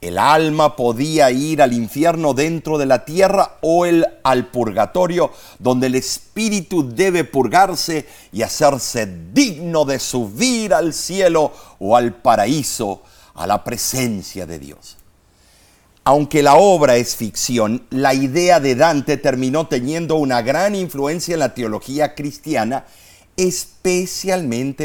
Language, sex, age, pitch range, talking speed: Spanish, male, 50-69, 115-170 Hz, 125 wpm